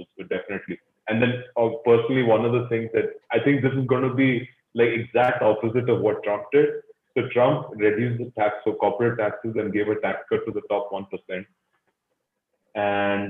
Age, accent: 30-49, native